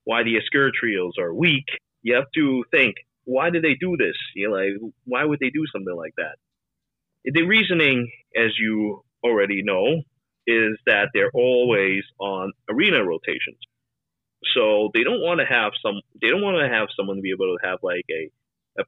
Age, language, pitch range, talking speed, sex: 30-49, English, 105-155 Hz, 180 wpm, male